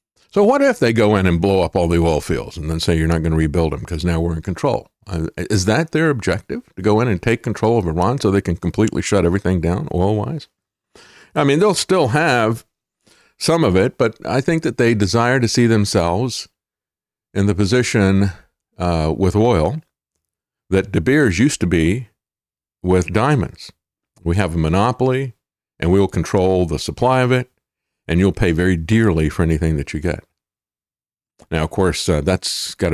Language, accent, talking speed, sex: English, American, 195 wpm, male